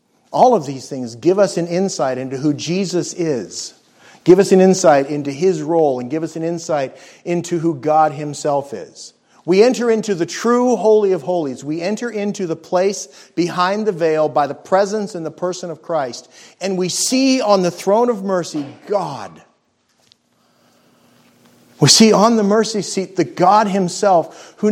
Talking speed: 175 wpm